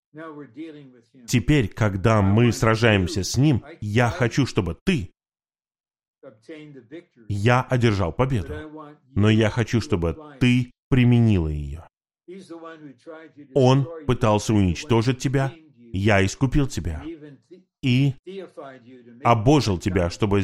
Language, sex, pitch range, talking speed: Russian, male, 105-135 Hz, 90 wpm